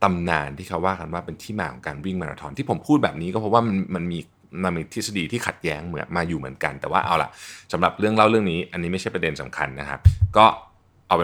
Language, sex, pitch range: Thai, male, 85-110 Hz